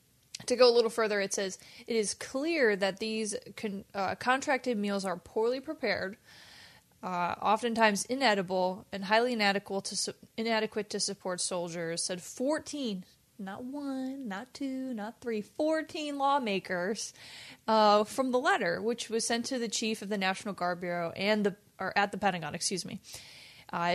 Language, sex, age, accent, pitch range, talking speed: English, female, 20-39, American, 190-240 Hz, 165 wpm